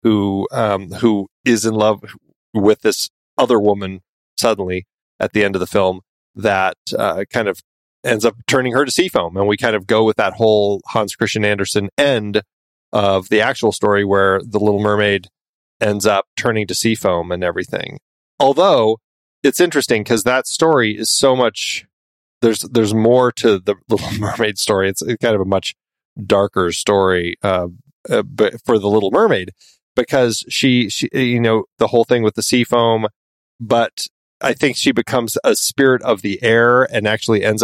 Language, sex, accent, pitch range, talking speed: English, male, American, 100-125 Hz, 175 wpm